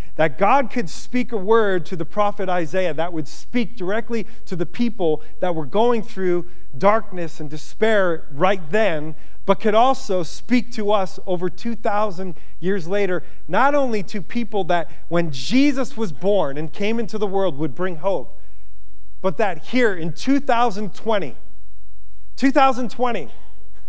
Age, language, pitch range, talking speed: 40-59, English, 160-225 Hz, 150 wpm